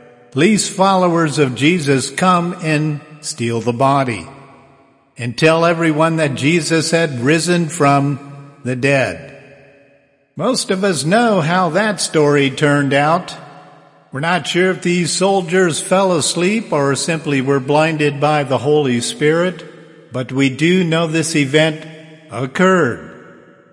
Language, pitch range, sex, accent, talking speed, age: English, 140-180 Hz, male, American, 130 wpm, 50-69